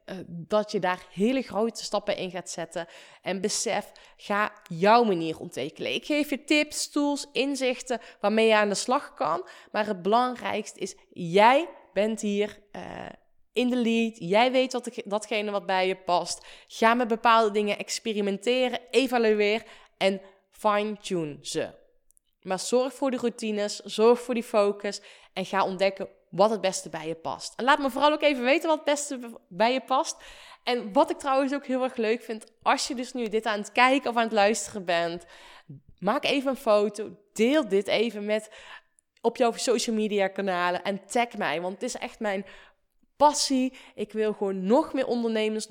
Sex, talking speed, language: female, 175 wpm, Dutch